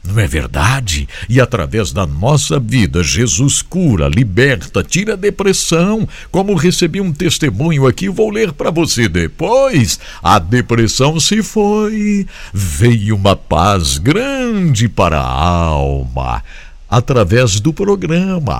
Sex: male